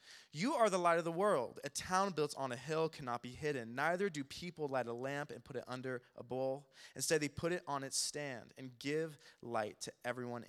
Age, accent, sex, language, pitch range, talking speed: 20-39, American, male, English, 125-170 Hz, 230 wpm